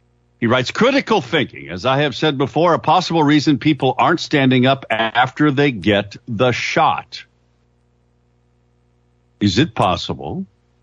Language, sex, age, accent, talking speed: English, male, 60-79, American, 135 wpm